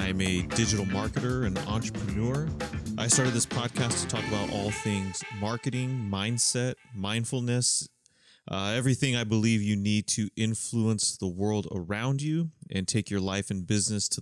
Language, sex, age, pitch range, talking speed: English, male, 30-49, 100-120 Hz, 155 wpm